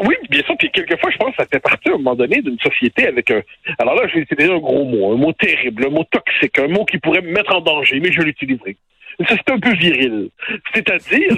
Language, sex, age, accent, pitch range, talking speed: French, male, 60-79, French, 145-240 Hz, 255 wpm